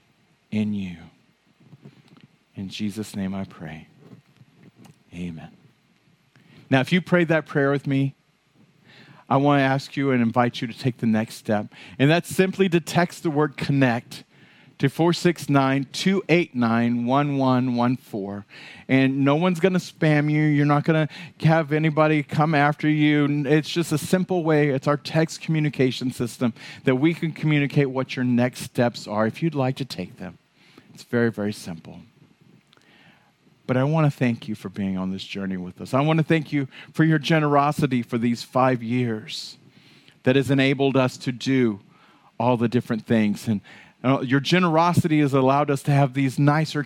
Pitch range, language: 120-155 Hz, English